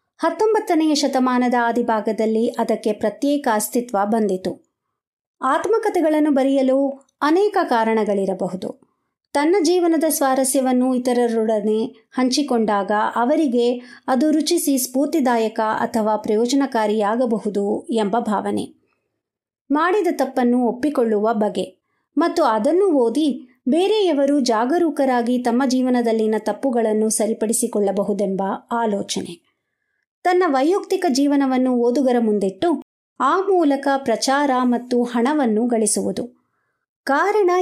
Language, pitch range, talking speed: Kannada, 225-300 Hz, 80 wpm